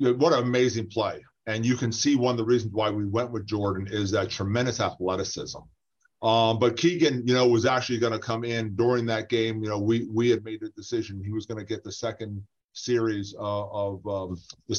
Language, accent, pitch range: English, American, 110-130 Hz